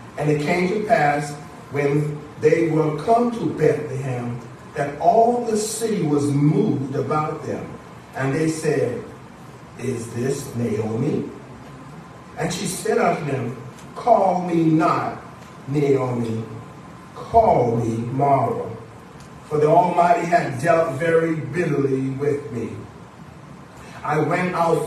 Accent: American